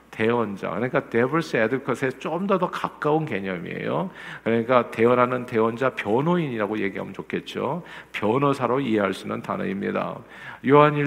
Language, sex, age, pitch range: Korean, male, 50-69, 115-155 Hz